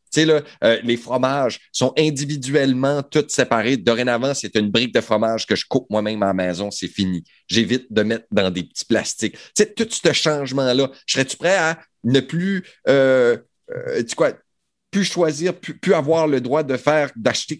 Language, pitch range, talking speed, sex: French, 120-155 Hz, 200 wpm, male